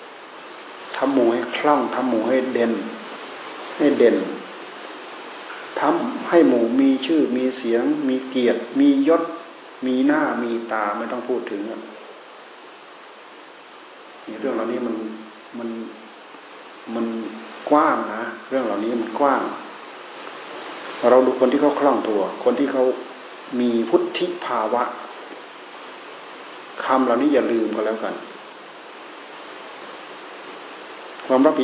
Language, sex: Thai, male